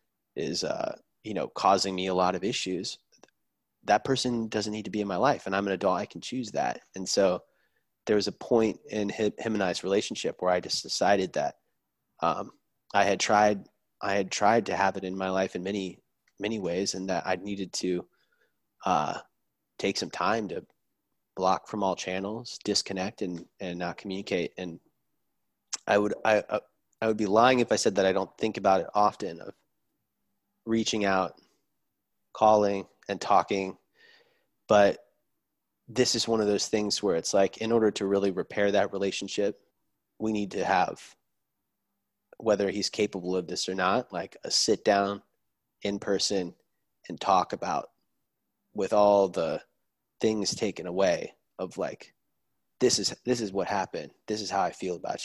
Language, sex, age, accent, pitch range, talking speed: English, male, 30-49, American, 95-110 Hz, 175 wpm